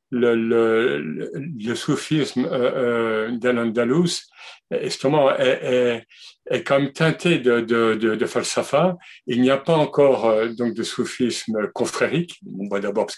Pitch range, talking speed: 115-140 Hz, 145 wpm